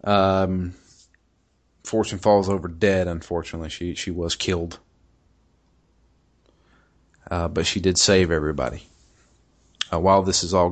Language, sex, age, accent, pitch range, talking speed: English, male, 40-59, American, 85-110 Hz, 120 wpm